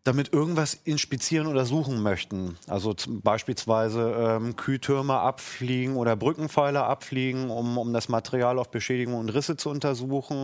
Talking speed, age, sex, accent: 140 wpm, 30-49, male, German